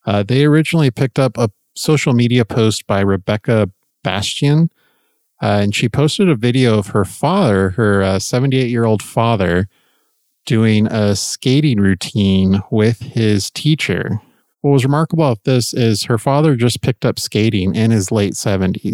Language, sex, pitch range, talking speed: English, male, 100-130 Hz, 150 wpm